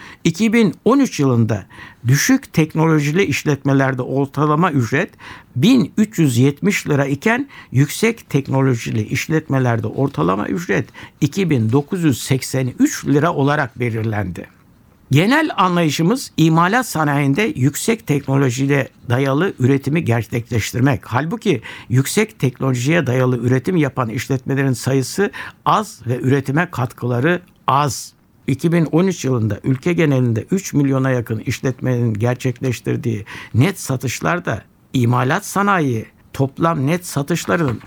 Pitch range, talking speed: 125-165 Hz, 90 wpm